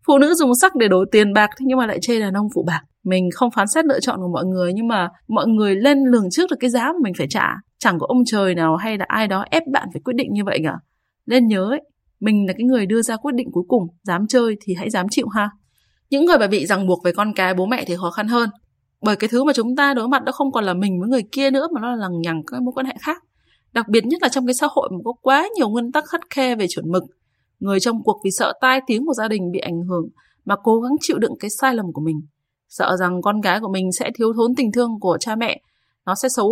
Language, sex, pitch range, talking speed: Vietnamese, female, 190-260 Hz, 290 wpm